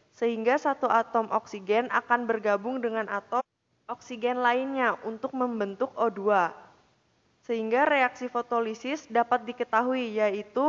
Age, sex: 20-39, female